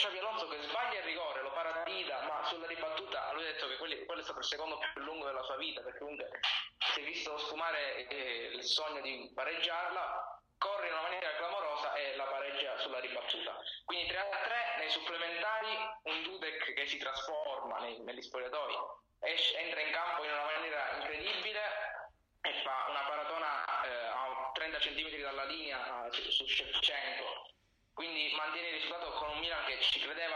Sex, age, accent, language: male, 20-39, native, Italian